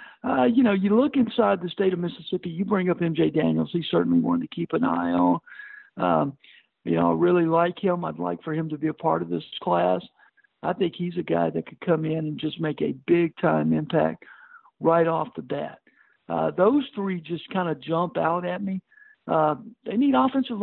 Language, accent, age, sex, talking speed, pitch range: English, American, 60-79, male, 220 wpm, 155-205 Hz